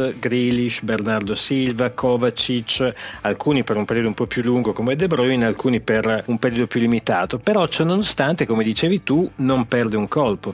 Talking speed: 170 wpm